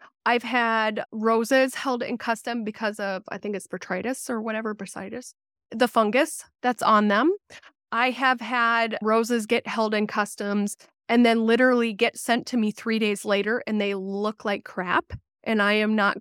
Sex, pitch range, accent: female, 210-255 Hz, American